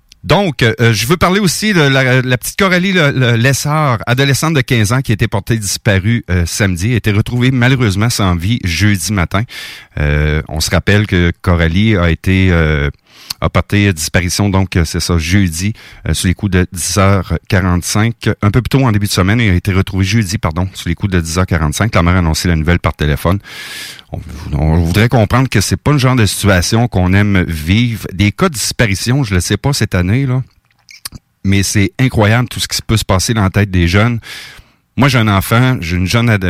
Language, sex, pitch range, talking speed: French, male, 90-120 Hz, 210 wpm